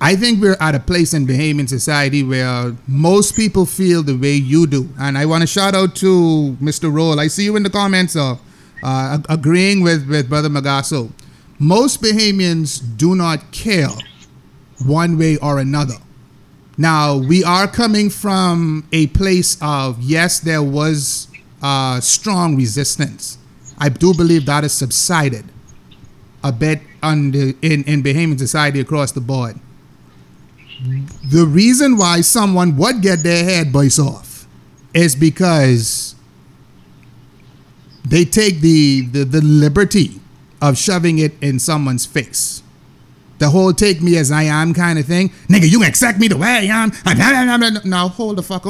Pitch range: 140-185 Hz